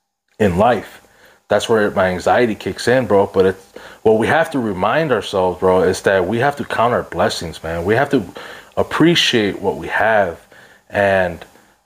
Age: 20-39